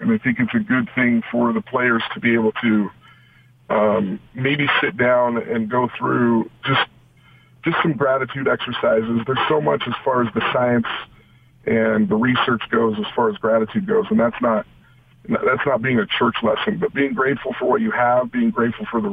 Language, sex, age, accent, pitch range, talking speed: English, male, 40-59, American, 120-145 Hz, 200 wpm